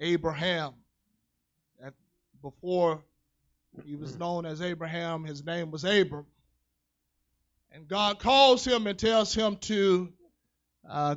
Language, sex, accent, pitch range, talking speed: English, male, American, 140-200 Hz, 105 wpm